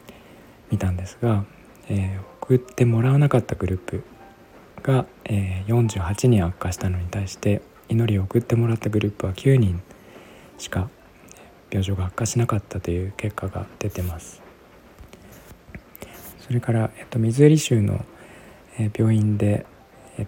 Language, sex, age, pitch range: Japanese, male, 20-39, 100-120 Hz